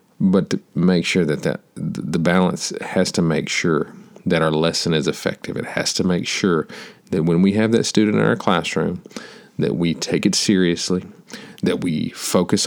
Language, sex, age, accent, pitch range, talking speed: English, male, 40-59, American, 85-105 Hz, 185 wpm